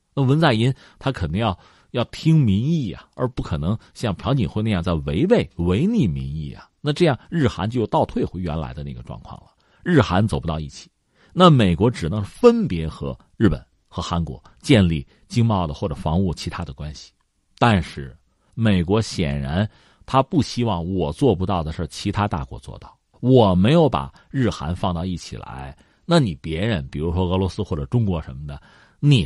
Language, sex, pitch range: Chinese, male, 80-125 Hz